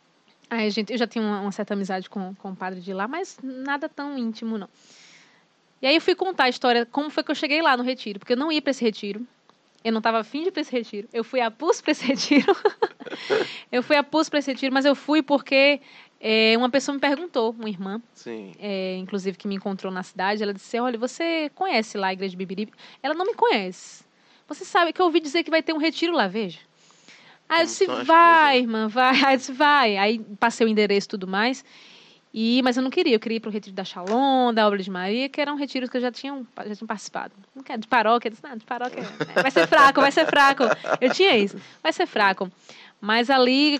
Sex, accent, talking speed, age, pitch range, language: female, Brazilian, 235 wpm, 20-39, 210-285 Hz, Portuguese